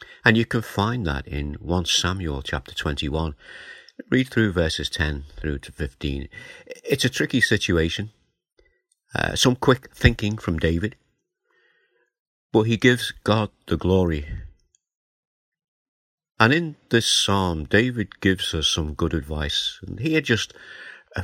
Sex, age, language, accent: male, 50-69, English, British